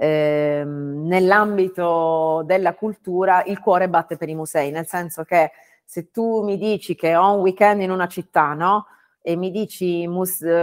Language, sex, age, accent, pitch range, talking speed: Italian, female, 30-49, native, 160-195 Hz, 165 wpm